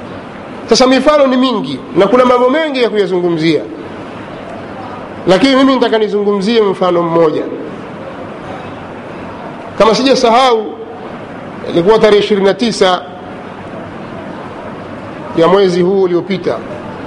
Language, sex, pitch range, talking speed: Swahili, male, 185-235 Hz, 90 wpm